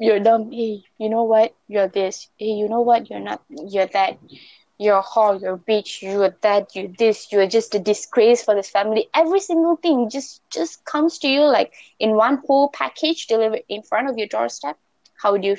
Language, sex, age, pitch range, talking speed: English, female, 20-39, 205-270 Hz, 210 wpm